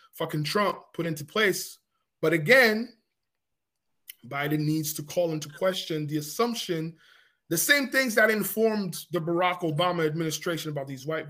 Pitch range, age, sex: 150-185 Hz, 20-39, male